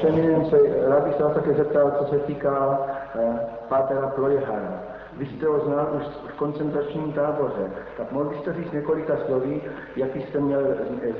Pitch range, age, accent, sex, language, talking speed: 130-160 Hz, 60-79, native, male, Czech, 155 wpm